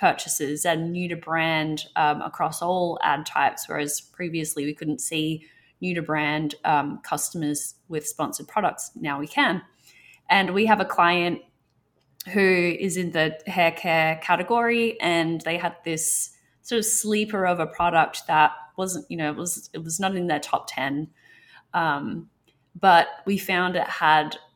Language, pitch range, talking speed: English, 155-180 Hz, 165 wpm